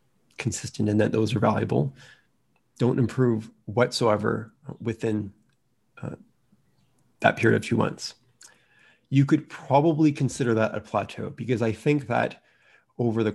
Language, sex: English, male